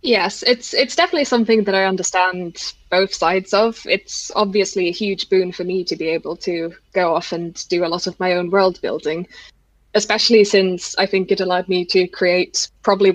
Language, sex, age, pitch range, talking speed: English, female, 20-39, 180-210 Hz, 195 wpm